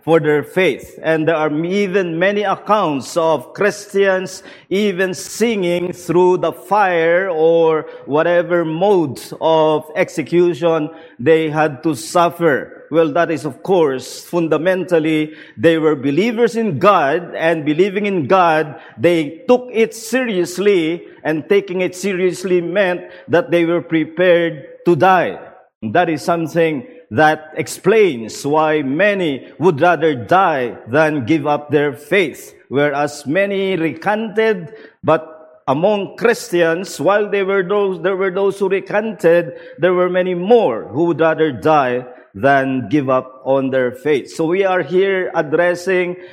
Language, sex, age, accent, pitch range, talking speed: English, male, 50-69, Filipino, 155-190 Hz, 130 wpm